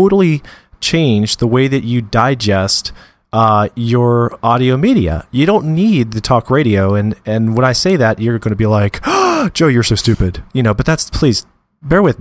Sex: male